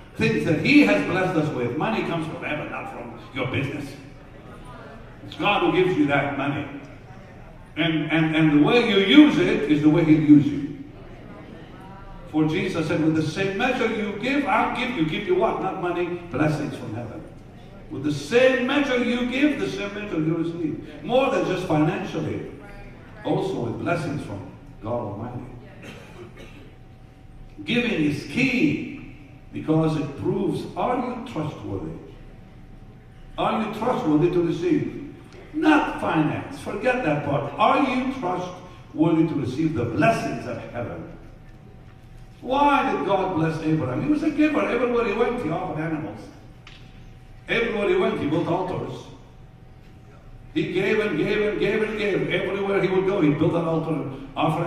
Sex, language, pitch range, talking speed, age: male, English, 145-200 Hz, 155 wpm, 60-79